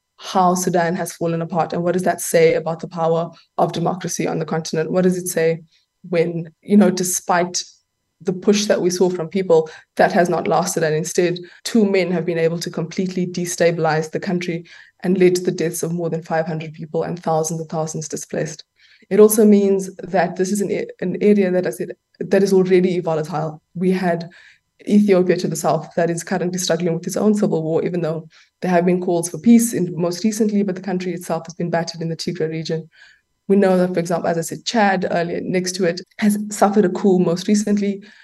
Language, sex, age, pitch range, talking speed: English, female, 20-39, 170-195 Hz, 215 wpm